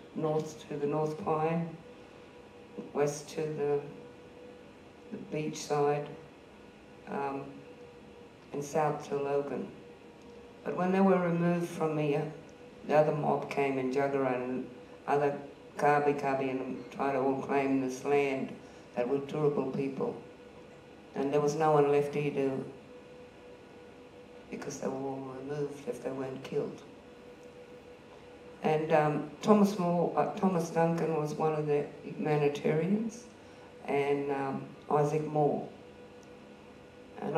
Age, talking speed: 50-69, 125 wpm